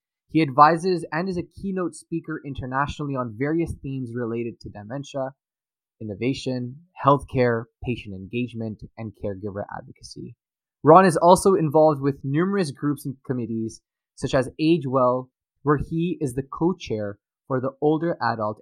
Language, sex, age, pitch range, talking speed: English, male, 20-39, 115-150 Hz, 135 wpm